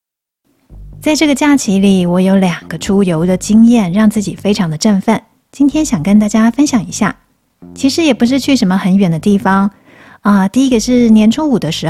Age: 20-39